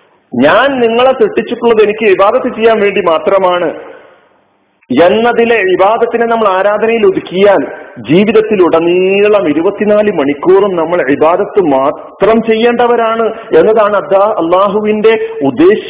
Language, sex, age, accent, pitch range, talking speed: Malayalam, male, 50-69, native, 165-235 Hz, 90 wpm